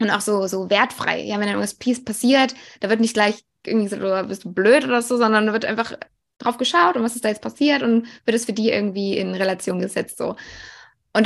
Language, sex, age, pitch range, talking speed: German, female, 20-39, 195-230 Hz, 240 wpm